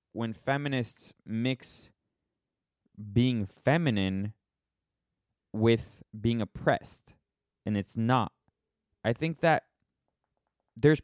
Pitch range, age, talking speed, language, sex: 95-120 Hz, 20-39, 80 wpm, English, male